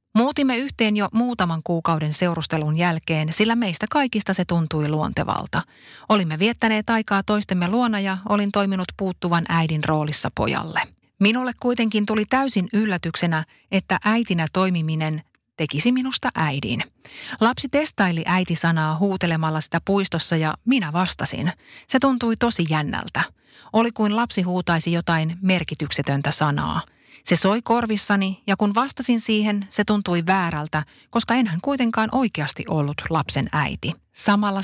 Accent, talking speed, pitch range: native, 130 wpm, 160-215 Hz